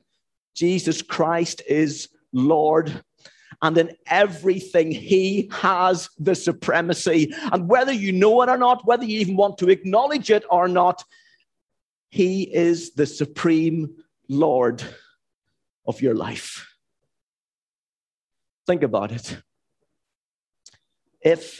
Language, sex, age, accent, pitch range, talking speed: English, male, 50-69, British, 165-210 Hz, 110 wpm